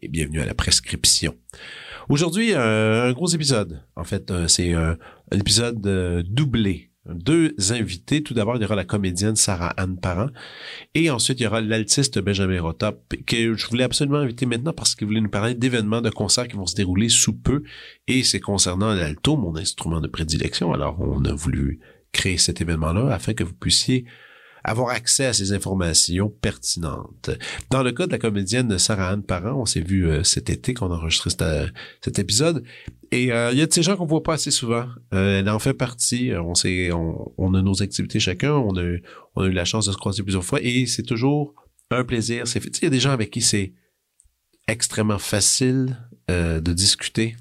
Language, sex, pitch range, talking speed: French, male, 90-125 Hz, 200 wpm